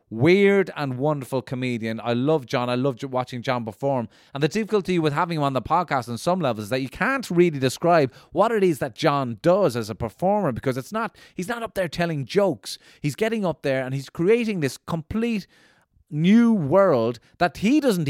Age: 30-49